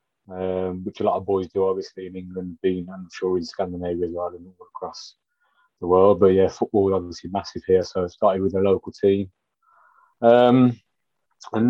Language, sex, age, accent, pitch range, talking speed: Swedish, male, 20-39, British, 95-120 Hz, 195 wpm